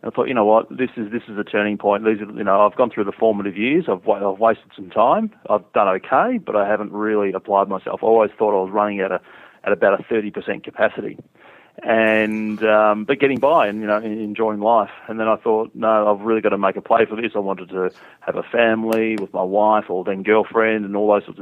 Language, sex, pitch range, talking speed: English, male, 100-110 Hz, 250 wpm